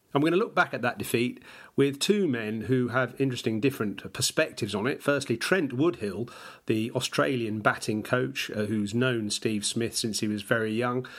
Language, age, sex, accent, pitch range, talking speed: English, 40-59, male, British, 110-130 Hz, 180 wpm